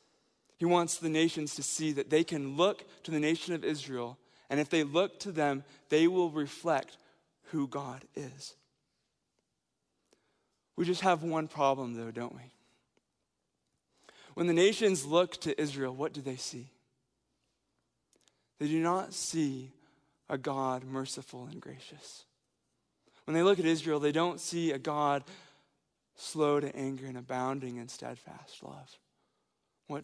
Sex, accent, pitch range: male, American, 130-160 Hz